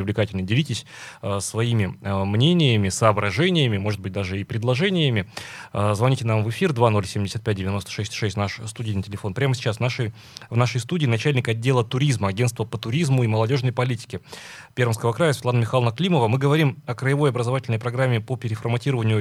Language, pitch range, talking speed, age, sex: Russian, 105-130 Hz, 160 wpm, 20-39, male